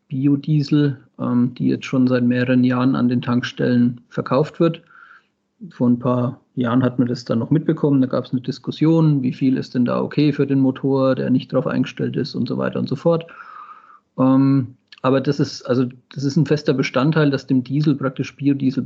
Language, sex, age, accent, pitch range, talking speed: German, male, 40-59, German, 130-155 Hz, 195 wpm